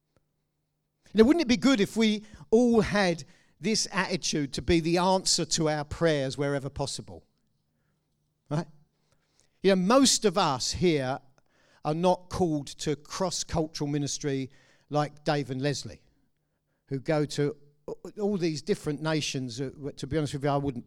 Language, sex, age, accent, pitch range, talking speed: English, male, 50-69, British, 150-205 Hz, 145 wpm